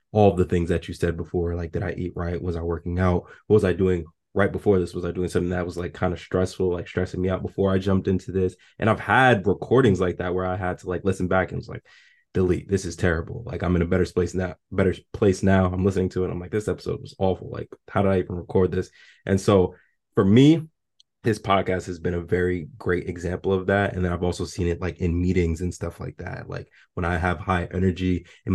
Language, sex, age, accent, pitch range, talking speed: English, male, 20-39, American, 85-95 Hz, 260 wpm